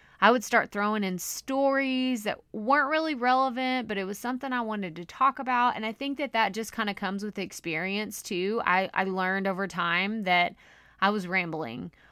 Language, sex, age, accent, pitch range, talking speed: English, female, 20-39, American, 180-225 Hz, 205 wpm